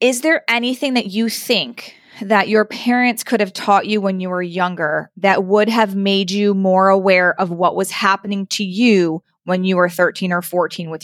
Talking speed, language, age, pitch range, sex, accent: 200 wpm, English, 20-39, 180-215 Hz, female, American